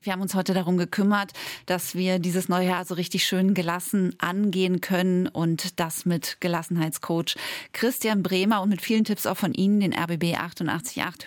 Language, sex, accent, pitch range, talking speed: German, female, German, 175-210 Hz, 175 wpm